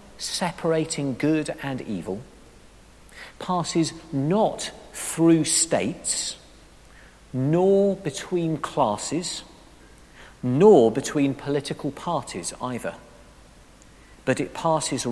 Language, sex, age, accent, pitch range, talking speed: English, male, 50-69, British, 115-165 Hz, 75 wpm